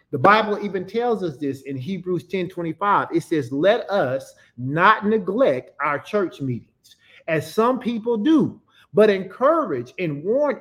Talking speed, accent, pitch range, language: 155 wpm, American, 150-215 Hz, English